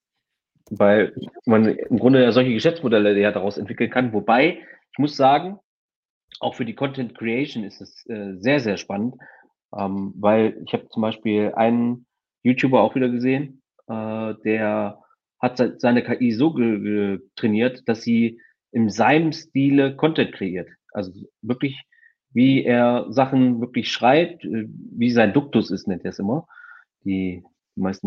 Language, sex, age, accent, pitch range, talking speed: German, male, 30-49, German, 105-135 Hz, 140 wpm